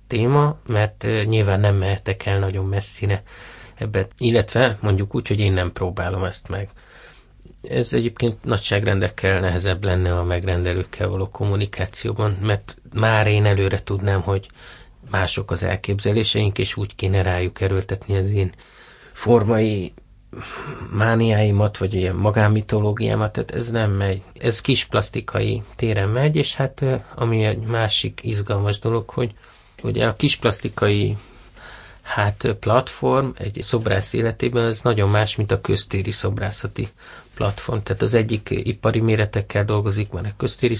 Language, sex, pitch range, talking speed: Hungarian, male, 100-115 Hz, 130 wpm